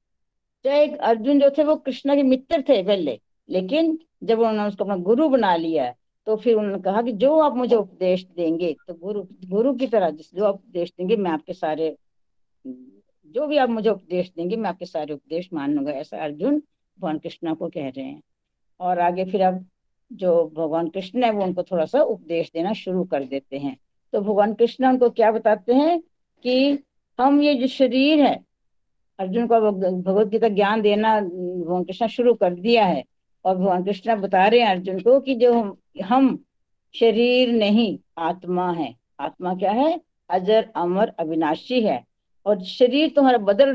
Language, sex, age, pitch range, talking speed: Hindi, female, 60-79, 180-255 Hz, 160 wpm